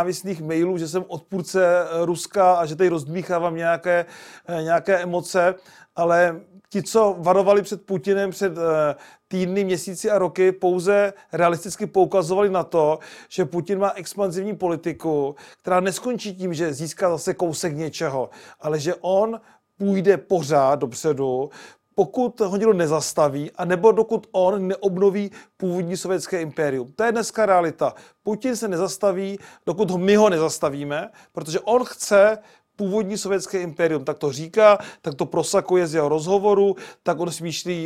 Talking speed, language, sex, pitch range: 140 wpm, Czech, male, 165-195 Hz